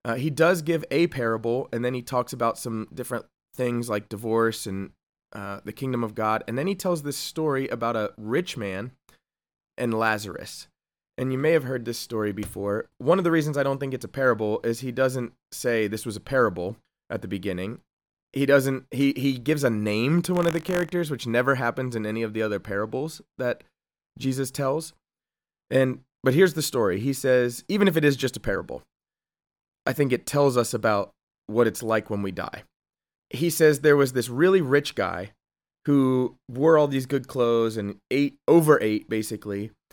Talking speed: 200 wpm